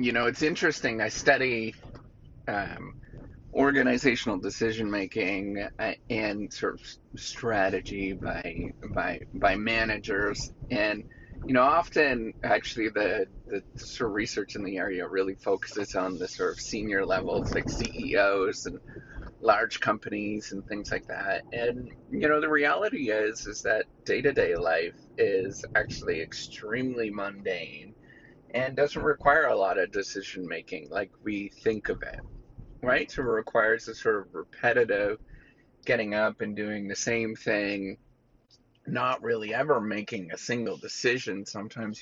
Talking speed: 140 wpm